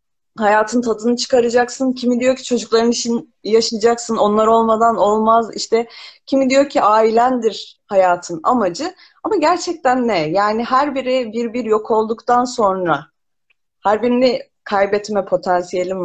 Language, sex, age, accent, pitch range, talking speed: Turkish, female, 30-49, native, 190-270 Hz, 125 wpm